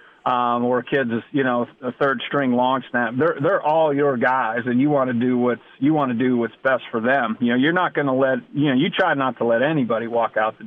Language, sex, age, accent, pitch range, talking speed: English, male, 40-59, American, 125-150 Hz, 255 wpm